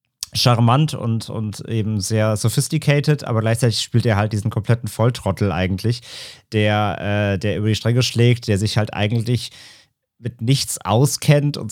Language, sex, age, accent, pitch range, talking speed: German, male, 30-49, German, 115-130 Hz, 155 wpm